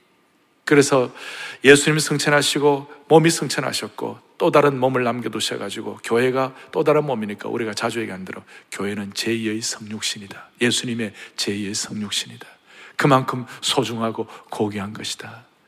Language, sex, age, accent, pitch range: Korean, male, 40-59, native, 125-205 Hz